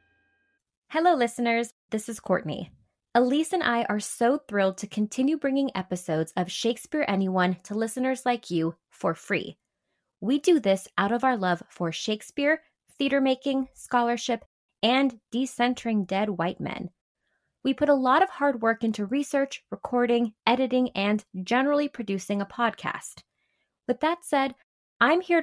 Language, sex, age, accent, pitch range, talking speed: English, female, 20-39, American, 190-270 Hz, 145 wpm